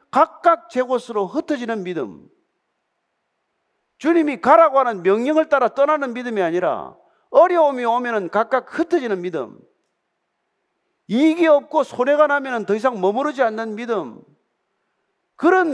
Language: Korean